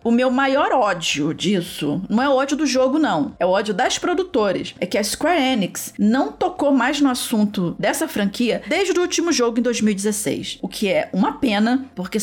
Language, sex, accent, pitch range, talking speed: Portuguese, female, Brazilian, 205-265 Hz, 200 wpm